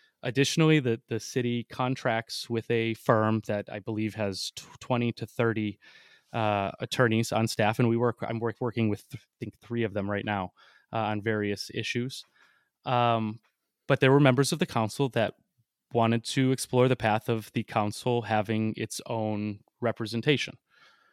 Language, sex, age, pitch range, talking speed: English, male, 20-39, 110-125 Hz, 165 wpm